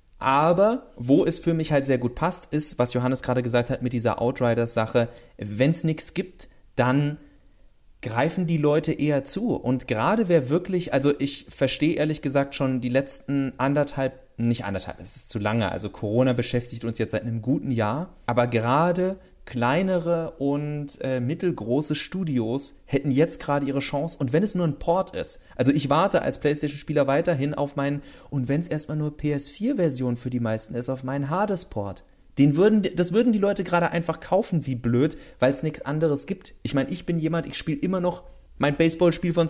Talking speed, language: 190 wpm, German